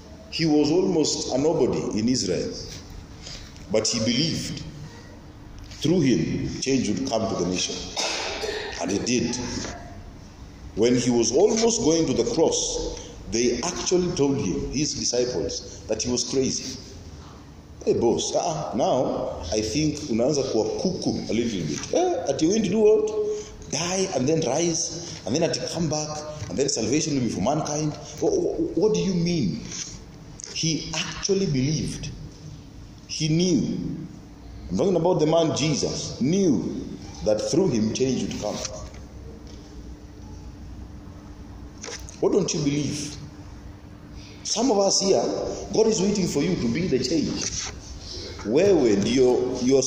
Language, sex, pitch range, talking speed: English, male, 100-165 Hz, 135 wpm